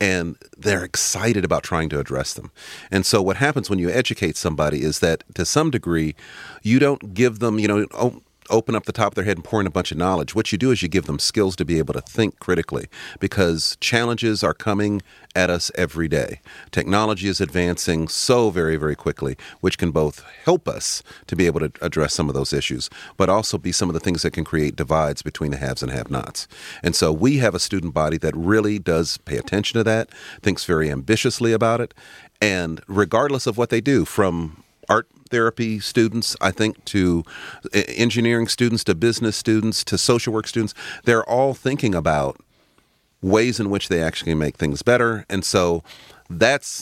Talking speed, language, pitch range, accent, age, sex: 200 wpm, English, 80-110 Hz, American, 40-59, male